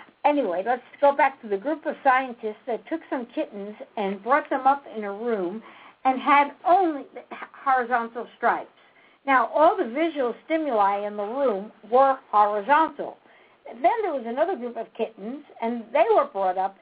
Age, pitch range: 60-79, 225-315 Hz